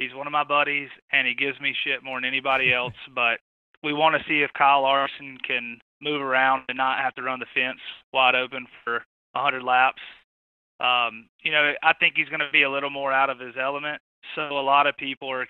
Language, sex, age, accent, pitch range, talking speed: English, male, 20-39, American, 125-150 Hz, 230 wpm